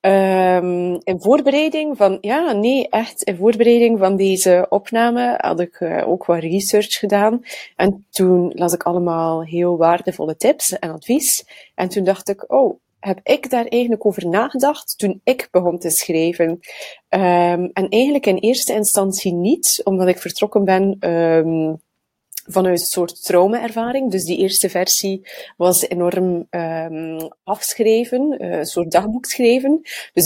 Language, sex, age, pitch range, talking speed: Dutch, female, 30-49, 175-235 Hz, 145 wpm